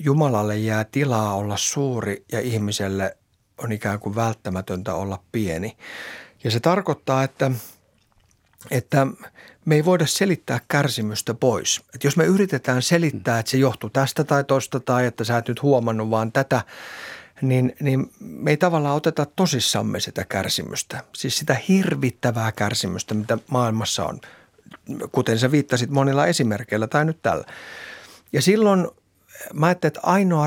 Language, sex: Finnish, male